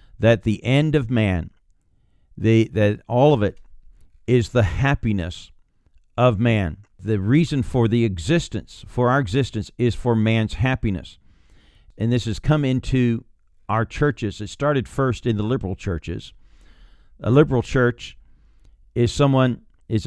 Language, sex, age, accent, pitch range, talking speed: English, male, 50-69, American, 100-125 Hz, 140 wpm